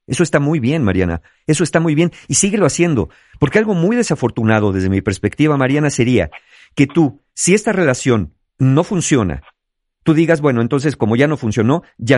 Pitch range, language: 95-140 Hz, Spanish